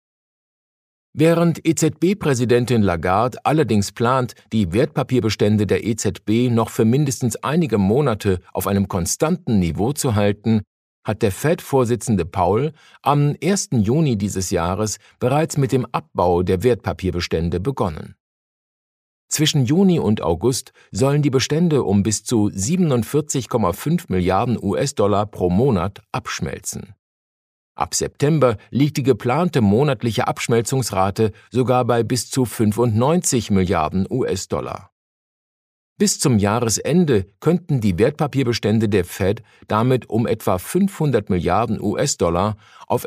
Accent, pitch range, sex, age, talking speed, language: German, 100-140 Hz, male, 50-69, 115 wpm, German